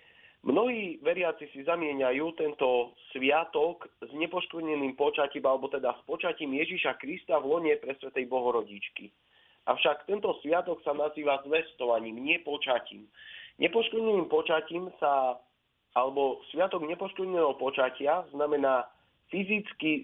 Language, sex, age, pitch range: Slovak, male, 40-59, 130-220 Hz